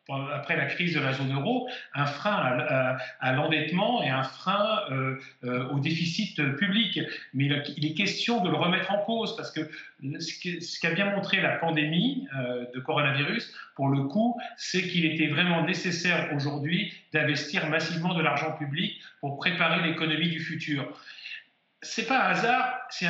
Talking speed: 175 wpm